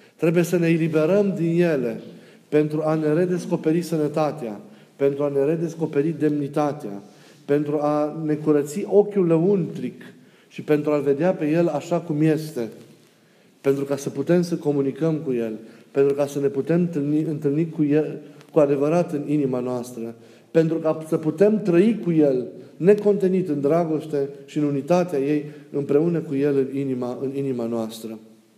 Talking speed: 155 wpm